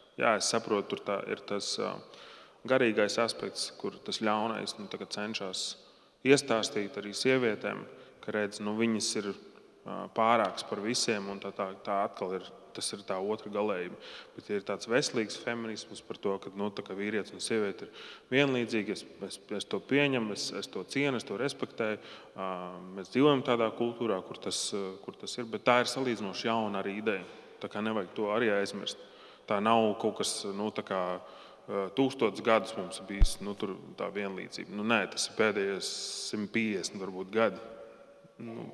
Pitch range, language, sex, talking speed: 100-120 Hz, English, male, 170 wpm